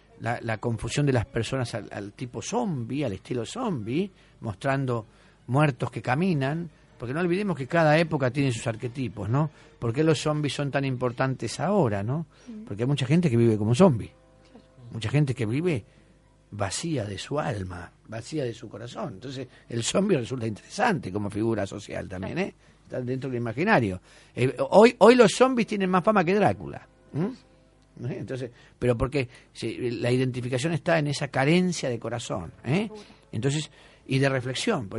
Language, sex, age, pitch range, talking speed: Spanish, male, 50-69, 120-165 Hz, 170 wpm